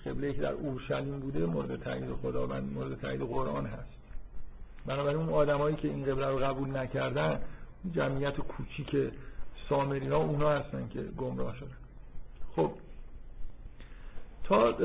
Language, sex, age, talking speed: Persian, male, 50-69, 140 wpm